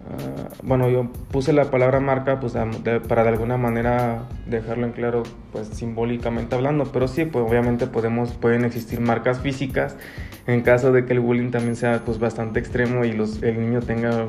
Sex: male